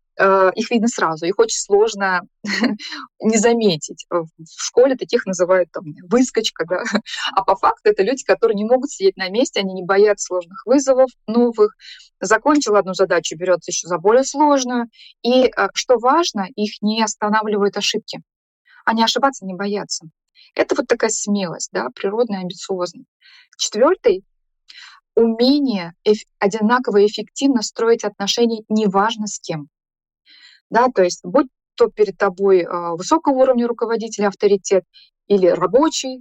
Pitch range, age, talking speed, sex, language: 190-255 Hz, 20-39, 135 wpm, female, Russian